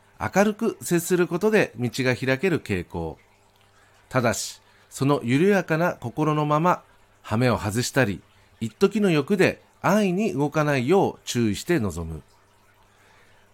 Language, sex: Japanese, male